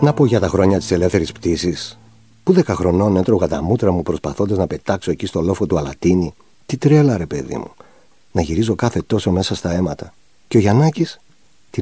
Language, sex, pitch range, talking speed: Greek, male, 85-125 Hz, 200 wpm